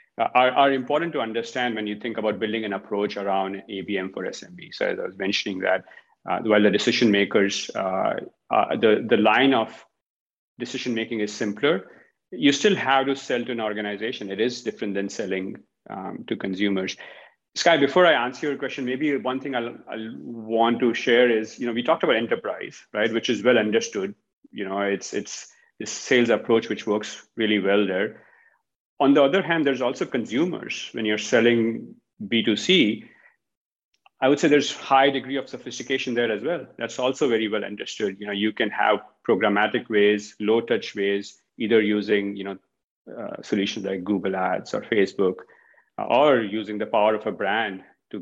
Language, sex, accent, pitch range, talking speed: English, male, Indian, 105-130 Hz, 180 wpm